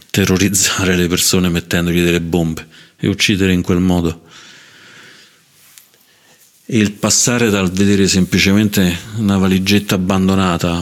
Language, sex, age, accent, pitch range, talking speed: Italian, male, 50-69, native, 90-100 Hz, 110 wpm